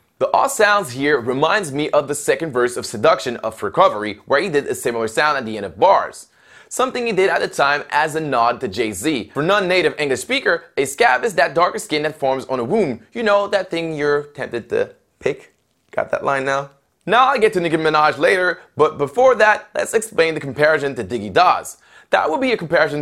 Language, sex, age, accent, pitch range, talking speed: English, male, 20-39, American, 140-205 Hz, 220 wpm